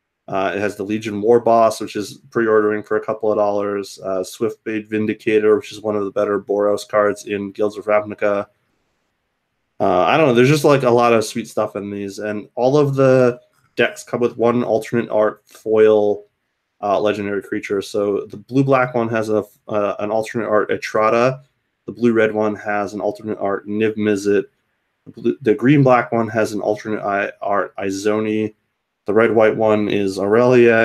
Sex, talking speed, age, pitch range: male, 175 wpm, 20-39, 100-120 Hz